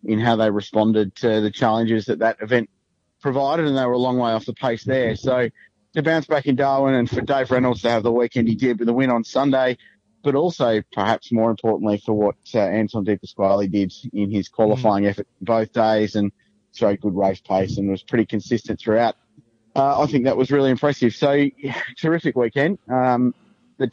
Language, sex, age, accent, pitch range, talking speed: English, male, 30-49, Australian, 110-130 Hz, 210 wpm